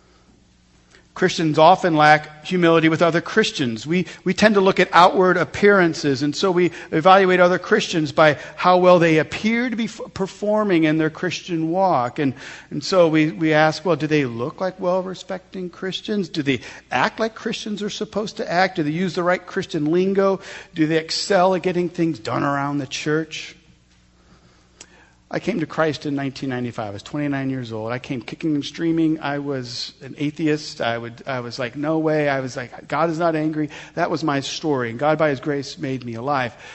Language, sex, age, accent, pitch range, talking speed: English, male, 50-69, American, 130-180 Hz, 190 wpm